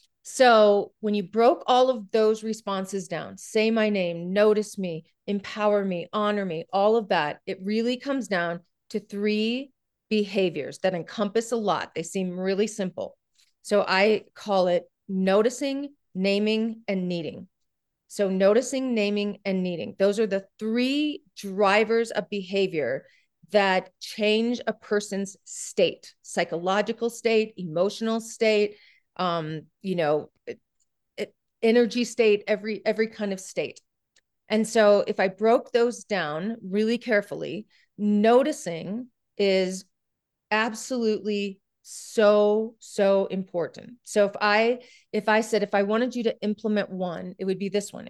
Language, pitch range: English, 190-225 Hz